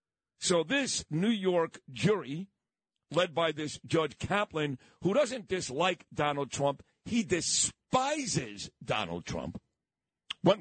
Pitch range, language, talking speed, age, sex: 150-190 Hz, English, 115 wpm, 50-69, male